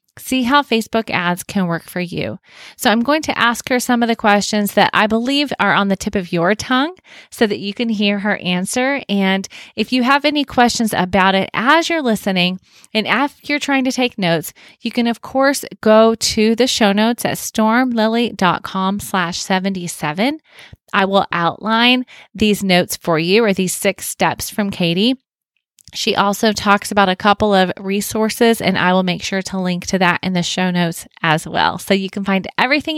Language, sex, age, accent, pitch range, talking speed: English, female, 30-49, American, 185-235 Hz, 195 wpm